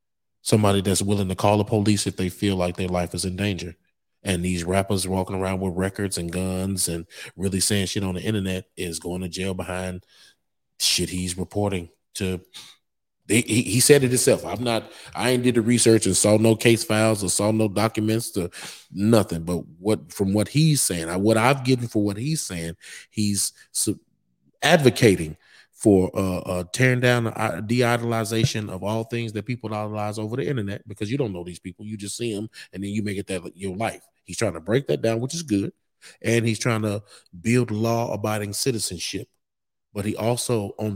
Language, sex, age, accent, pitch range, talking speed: English, male, 30-49, American, 95-115 Hz, 195 wpm